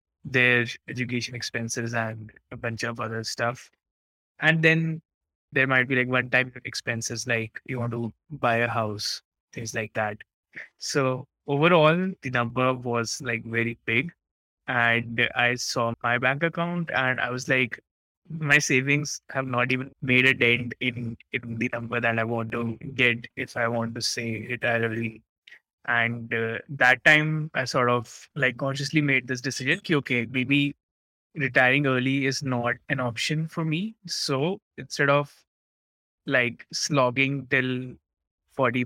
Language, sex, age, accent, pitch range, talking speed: English, male, 20-39, Indian, 115-135 Hz, 155 wpm